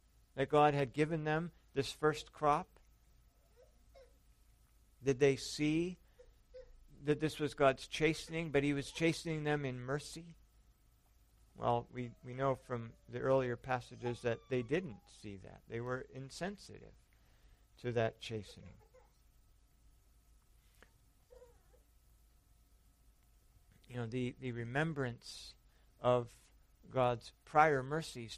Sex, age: male, 50-69